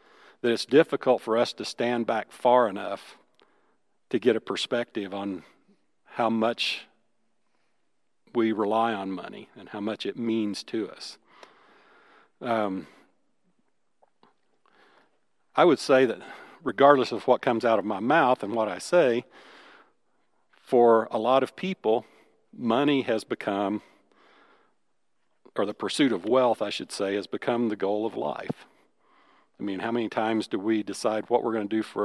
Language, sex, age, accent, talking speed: English, male, 50-69, American, 150 wpm